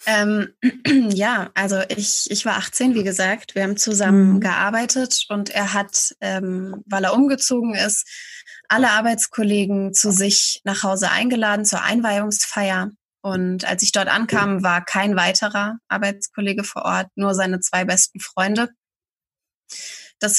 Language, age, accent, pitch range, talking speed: German, 20-39, German, 190-220 Hz, 140 wpm